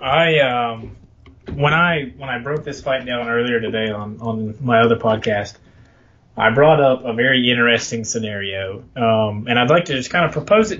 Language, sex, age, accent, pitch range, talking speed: English, male, 20-39, American, 115-140 Hz, 190 wpm